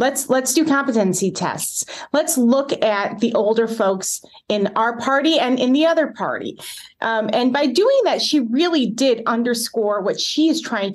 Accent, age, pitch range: American, 30-49, 205-260 Hz